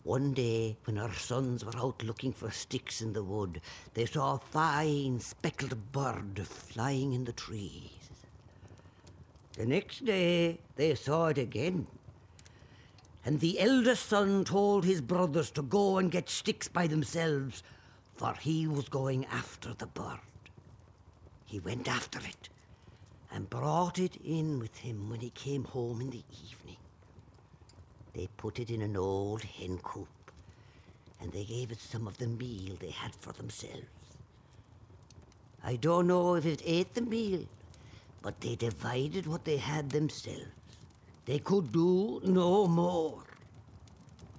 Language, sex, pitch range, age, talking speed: English, female, 105-150 Hz, 60-79, 145 wpm